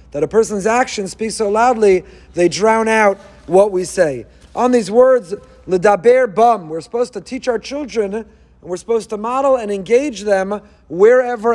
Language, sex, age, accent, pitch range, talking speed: English, male, 40-59, American, 200-255 Hz, 175 wpm